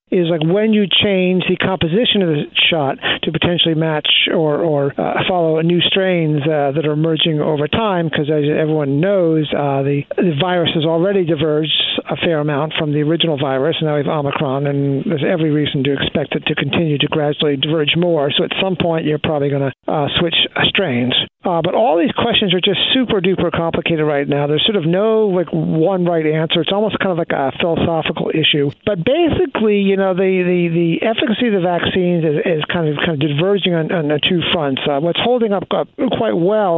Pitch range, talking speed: 150-185 Hz, 210 wpm